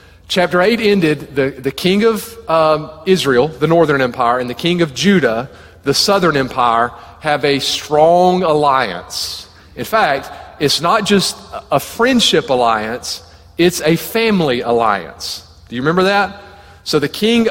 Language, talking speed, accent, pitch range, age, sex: English, 145 wpm, American, 135-185 Hz, 40-59, male